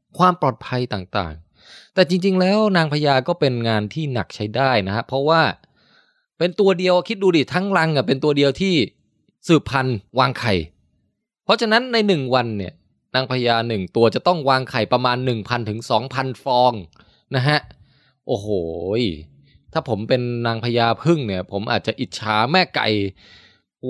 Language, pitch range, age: Thai, 115-165 Hz, 20-39